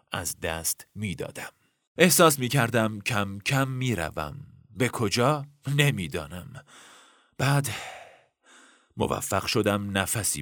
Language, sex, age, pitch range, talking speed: Persian, male, 40-59, 90-125 Hz, 90 wpm